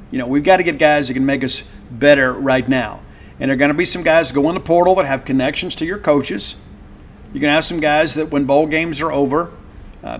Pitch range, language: 135-160 Hz, English